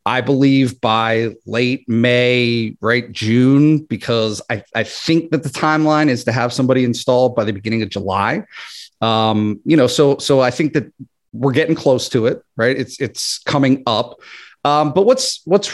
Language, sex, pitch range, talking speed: English, male, 110-145 Hz, 175 wpm